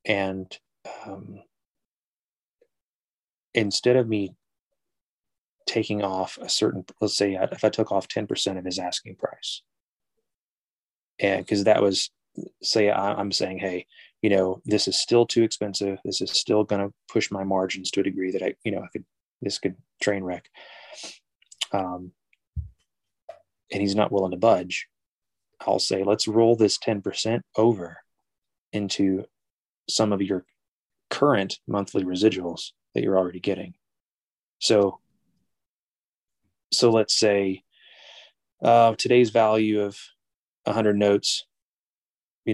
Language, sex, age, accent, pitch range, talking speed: English, male, 30-49, American, 95-110 Hz, 130 wpm